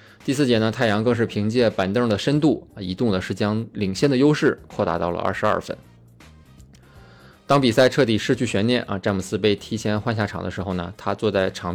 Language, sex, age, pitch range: Chinese, male, 20-39, 95-130 Hz